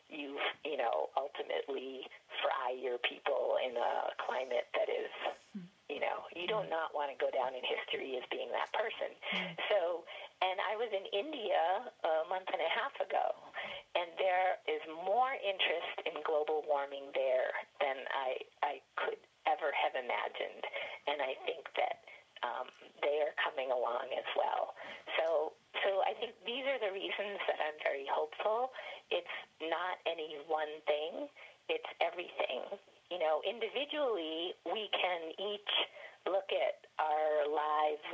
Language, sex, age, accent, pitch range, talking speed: English, female, 40-59, American, 150-235 Hz, 150 wpm